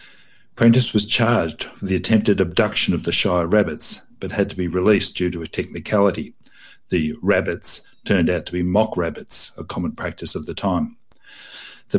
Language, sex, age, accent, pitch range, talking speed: English, male, 60-79, Australian, 90-110 Hz, 175 wpm